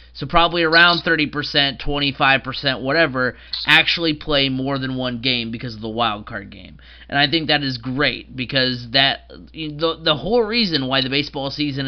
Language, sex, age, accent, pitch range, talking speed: English, male, 30-49, American, 130-155 Hz, 170 wpm